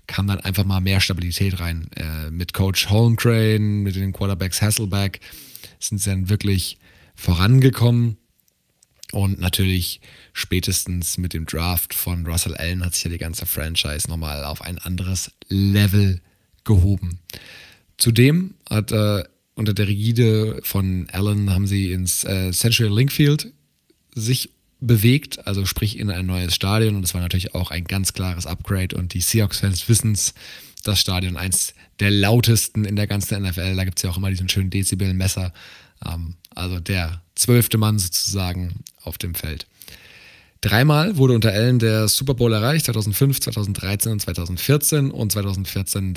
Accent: German